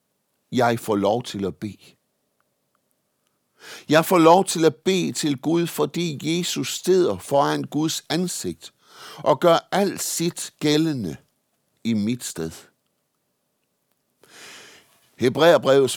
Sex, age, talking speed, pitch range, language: male, 60-79, 110 wpm, 125-170 Hz, Danish